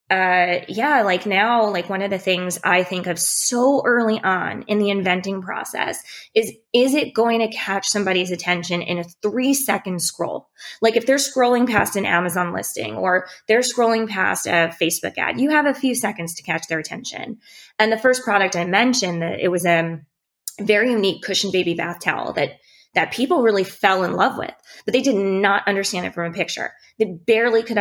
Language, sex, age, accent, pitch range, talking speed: English, female, 20-39, American, 175-220 Hz, 200 wpm